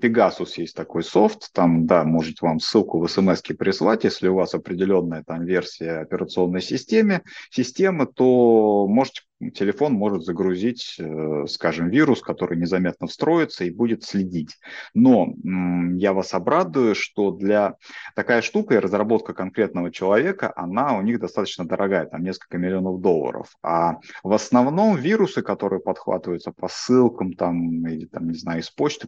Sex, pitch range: male, 85-115 Hz